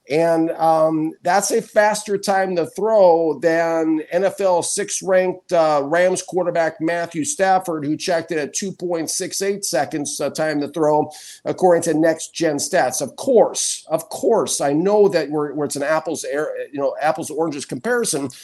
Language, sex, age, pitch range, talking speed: English, male, 50-69, 155-195 Hz, 165 wpm